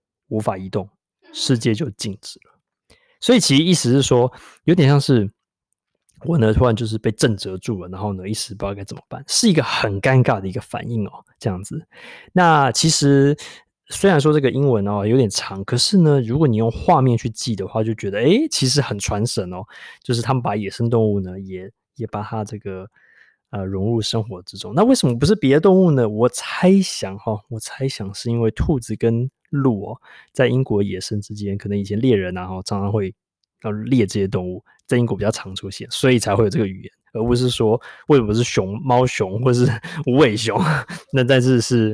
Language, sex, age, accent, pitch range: Chinese, male, 20-39, native, 105-135 Hz